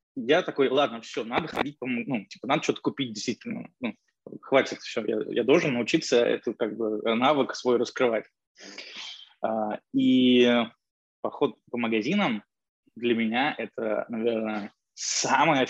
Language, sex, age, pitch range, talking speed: Russian, male, 20-39, 115-140 Hz, 130 wpm